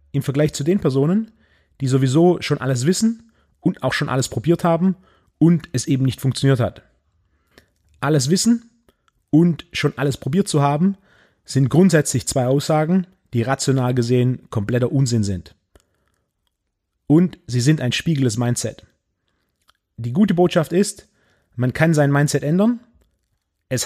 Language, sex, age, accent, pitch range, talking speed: German, male, 30-49, German, 115-165 Hz, 140 wpm